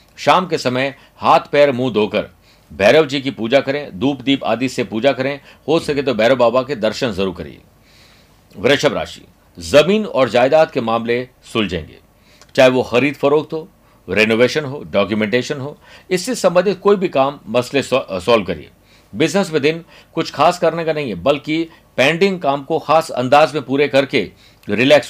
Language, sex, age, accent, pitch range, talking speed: Hindi, male, 50-69, native, 125-155 Hz, 170 wpm